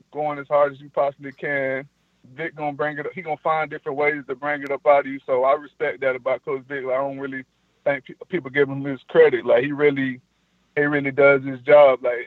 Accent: American